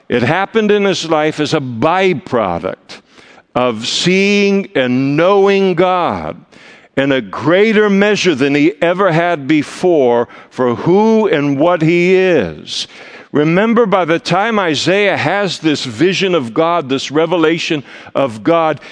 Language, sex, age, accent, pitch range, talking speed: English, male, 60-79, American, 125-185 Hz, 135 wpm